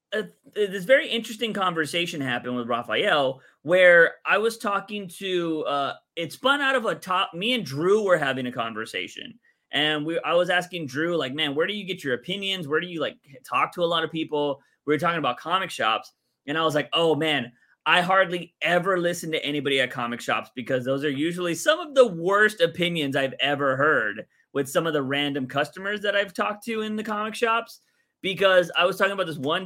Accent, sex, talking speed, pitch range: American, male, 210 wpm, 135-190 Hz